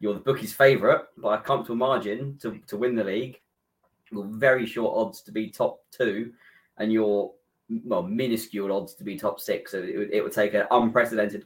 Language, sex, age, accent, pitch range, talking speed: English, male, 20-39, British, 105-115 Hz, 195 wpm